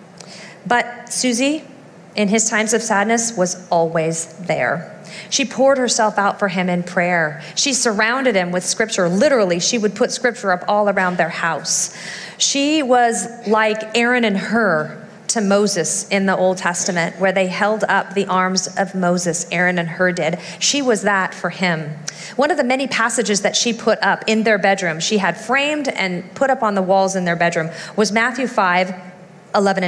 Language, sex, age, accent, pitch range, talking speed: English, female, 40-59, American, 175-220 Hz, 180 wpm